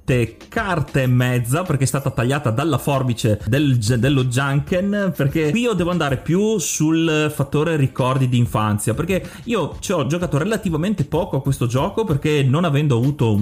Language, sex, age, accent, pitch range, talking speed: Italian, male, 30-49, native, 120-155 Hz, 160 wpm